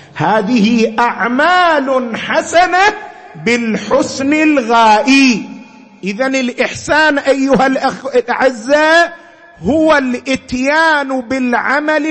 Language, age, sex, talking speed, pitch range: Arabic, 50-69, male, 60 wpm, 240-320 Hz